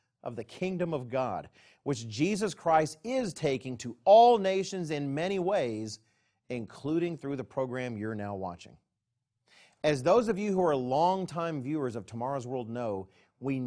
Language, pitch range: English, 115-165 Hz